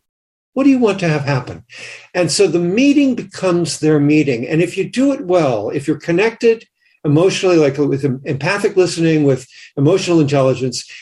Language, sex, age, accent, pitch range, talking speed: English, male, 60-79, American, 140-190 Hz, 170 wpm